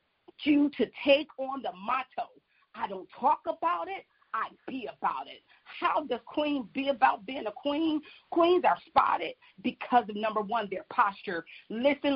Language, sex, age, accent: English, female, 40-59, American